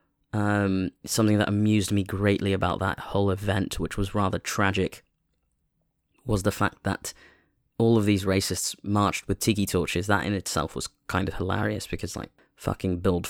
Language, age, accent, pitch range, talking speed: English, 20-39, British, 95-115 Hz, 165 wpm